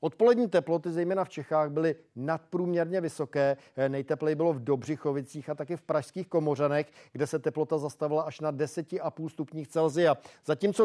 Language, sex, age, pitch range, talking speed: Czech, male, 50-69, 145-165 Hz, 140 wpm